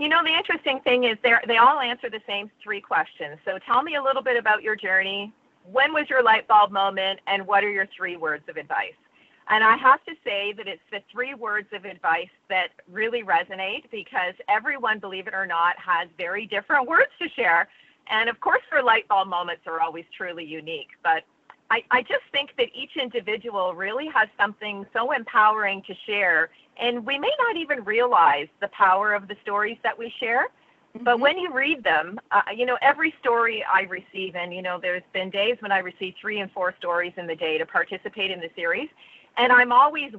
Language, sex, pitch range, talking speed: English, female, 190-250 Hz, 210 wpm